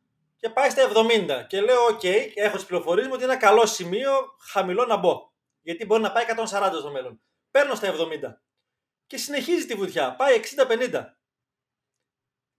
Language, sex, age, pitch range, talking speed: Greek, male, 30-49, 185-270 Hz, 165 wpm